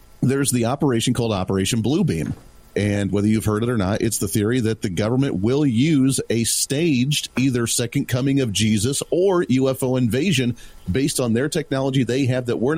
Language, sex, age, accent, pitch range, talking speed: English, male, 40-59, American, 105-135 Hz, 190 wpm